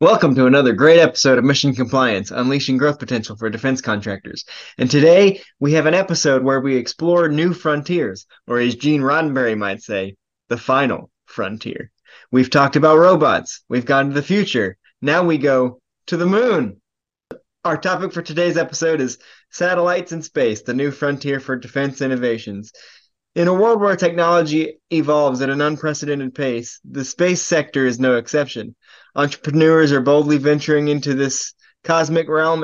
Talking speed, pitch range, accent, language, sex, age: 160 wpm, 135-165 Hz, American, English, male, 20-39